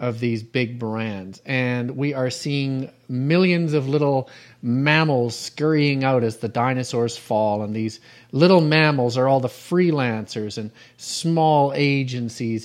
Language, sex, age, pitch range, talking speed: English, male, 40-59, 125-170 Hz, 140 wpm